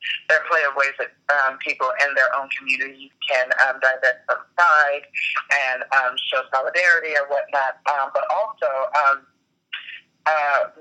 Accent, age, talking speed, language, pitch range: American, 30-49, 155 wpm, English, 130-150 Hz